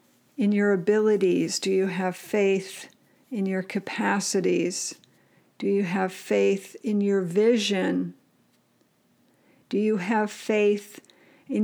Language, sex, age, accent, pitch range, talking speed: English, female, 50-69, American, 190-220 Hz, 115 wpm